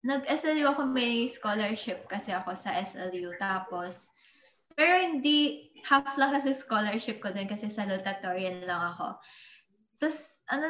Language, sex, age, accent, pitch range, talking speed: Filipino, female, 20-39, native, 190-250 Hz, 135 wpm